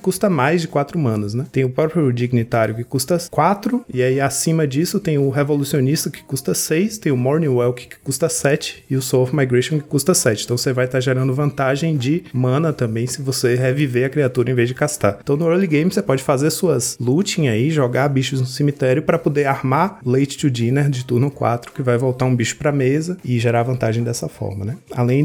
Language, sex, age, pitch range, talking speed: Portuguese, male, 20-39, 120-155 Hz, 225 wpm